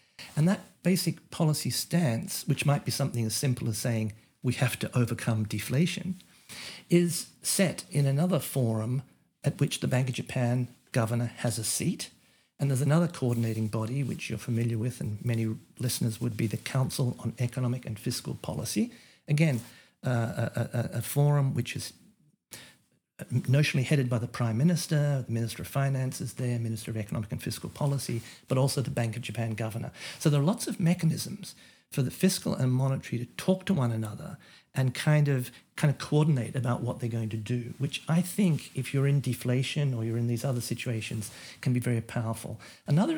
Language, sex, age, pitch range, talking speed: English, male, 50-69, 120-145 Hz, 185 wpm